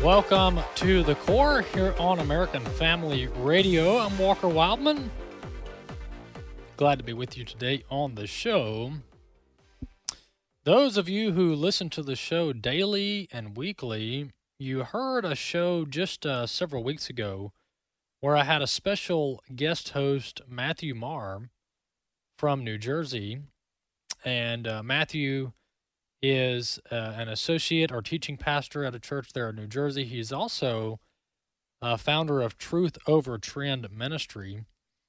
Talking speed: 135 wpm